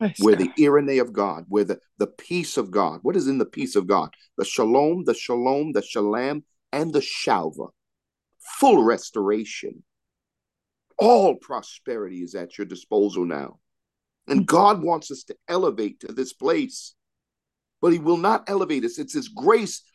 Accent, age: American, 50-69